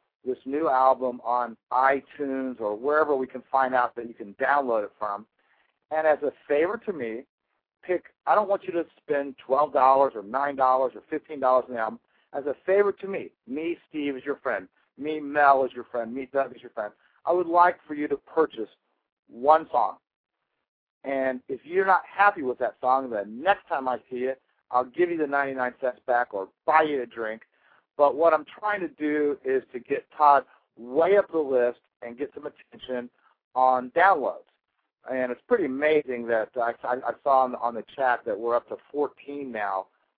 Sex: male